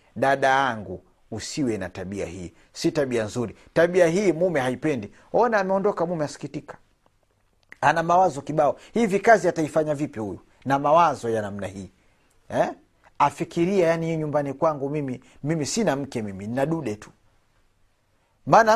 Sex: male